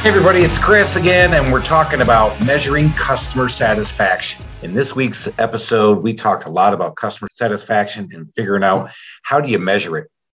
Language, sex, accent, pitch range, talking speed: English, male, American, 100-130 Hz, 180 wpm